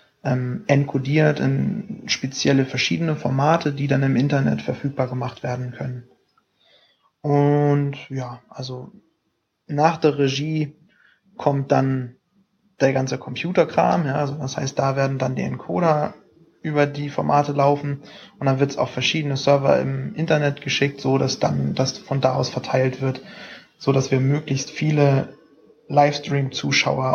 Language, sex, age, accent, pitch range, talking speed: German, male, 20-39, German, 130-145 Hz, 135 wpm